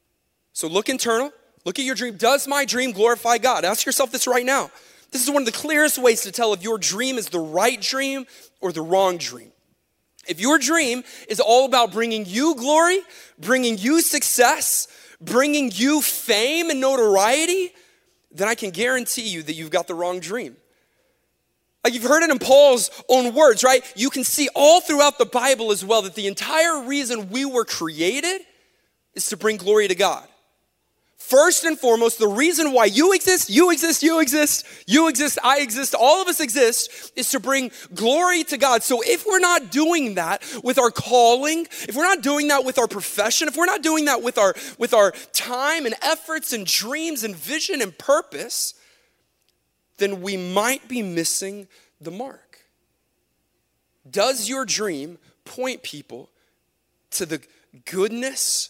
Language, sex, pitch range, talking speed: English, male, 210-295 Hz, 175 wpm